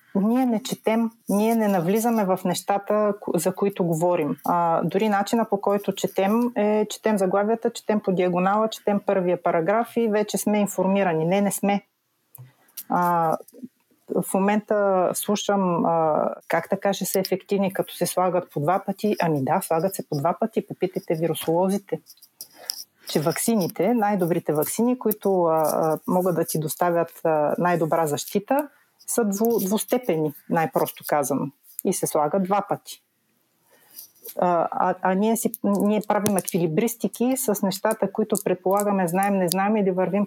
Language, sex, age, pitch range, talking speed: Bulgarian, female, 30-49, 180-220 Hz, 150 wpm